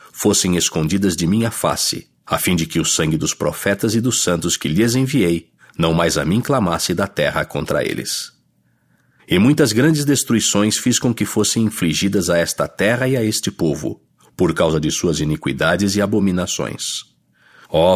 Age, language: 60-79, English